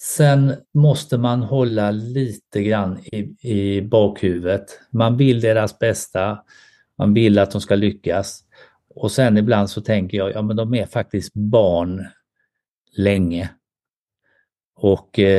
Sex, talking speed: male, 130 wpm